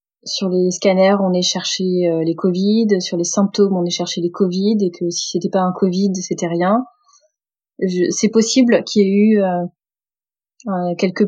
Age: 30-49